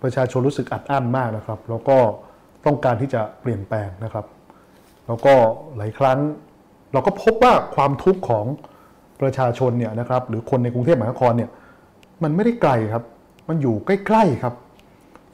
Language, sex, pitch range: Thai, male, 110-140 Hz